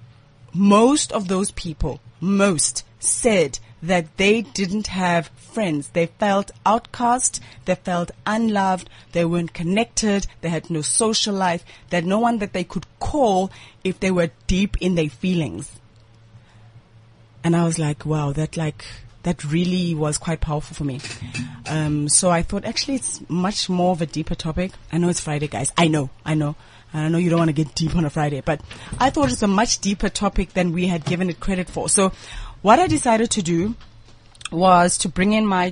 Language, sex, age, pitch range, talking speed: English, female, 30-49, 150-190 Hz, 185 wpm